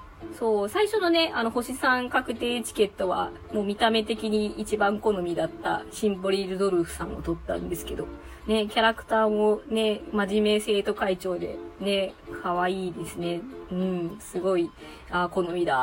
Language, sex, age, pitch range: Japanese, female, 20-39, 195-285 Hz